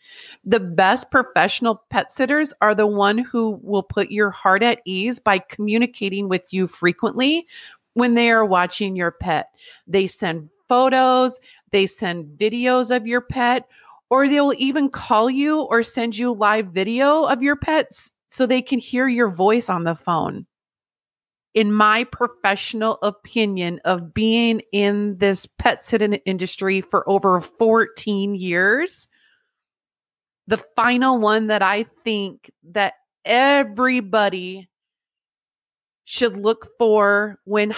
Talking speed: 135 wpm